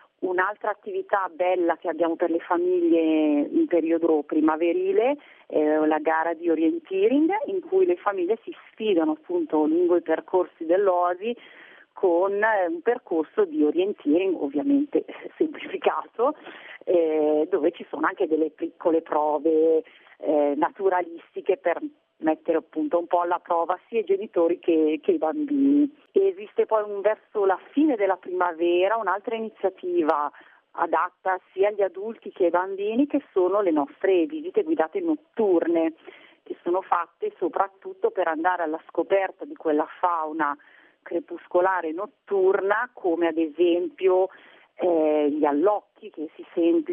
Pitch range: 160-220 Hz